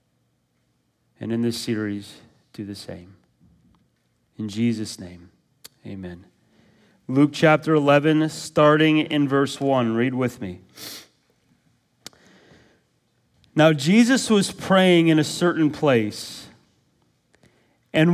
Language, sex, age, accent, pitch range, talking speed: English, male, 40-59, American, 125-210 Hz, 100 wpm